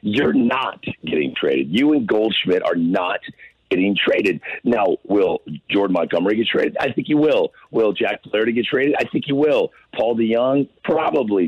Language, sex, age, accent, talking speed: English, male, 50-69, American, 180 wpm